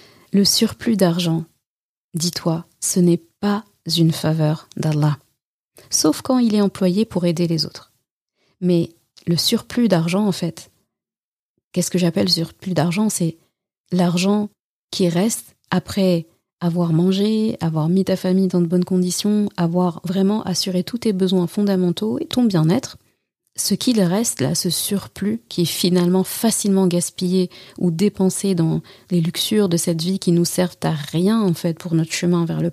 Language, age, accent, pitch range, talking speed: French, 30-49, French, 170-195 Hz, 160 wpm